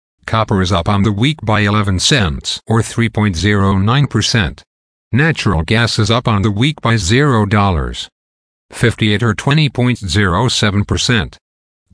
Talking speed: 110 wpm